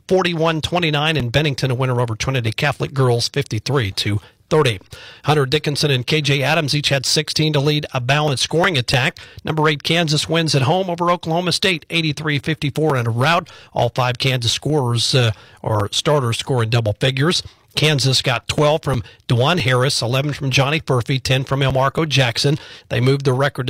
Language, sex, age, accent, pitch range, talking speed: English, male, 40-59, American, 125-155 Hz, 170 wpm